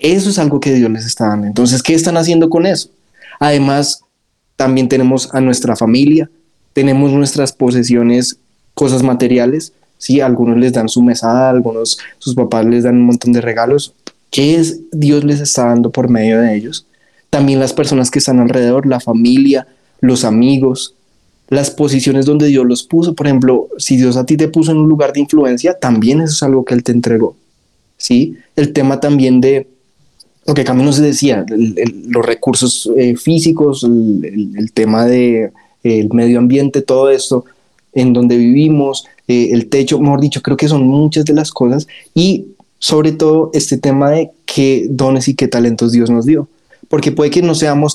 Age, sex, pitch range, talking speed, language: 20-39, male, 125-150 Hz, 185 wpm, Spanish